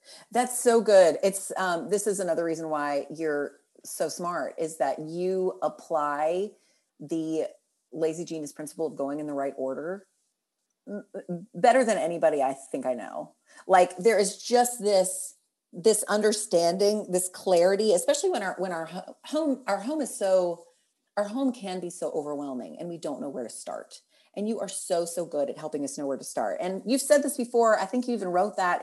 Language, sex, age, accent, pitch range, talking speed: English, female, 30-49, American, 165-225 Hz, 185 wpm